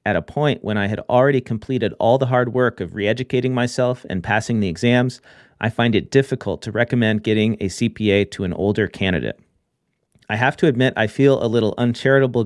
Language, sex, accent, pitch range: English, male, American, 105-125 Hz